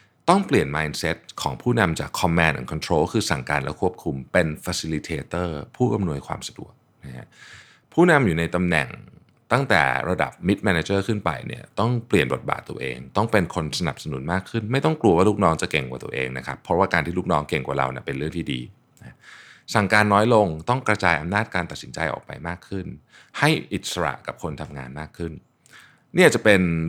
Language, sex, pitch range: Thai, male, 80-110 Hz